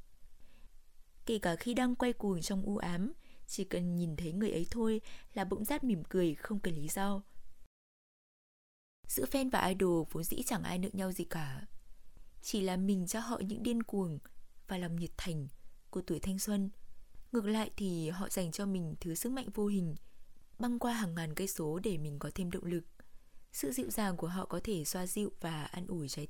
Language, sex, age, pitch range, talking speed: Vietnamese, female, 20-39, 165-210 Hz, 205 wpm